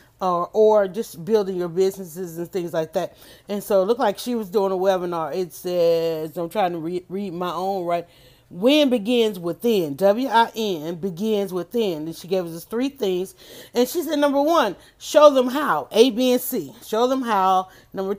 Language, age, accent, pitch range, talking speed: English, 30-49, American, 185-235 Hz, 190 wpm